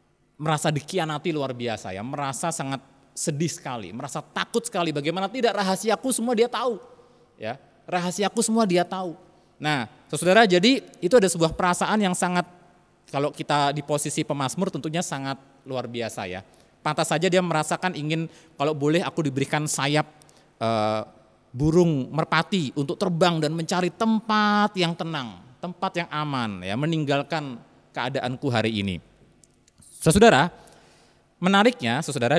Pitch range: 135-180 Hz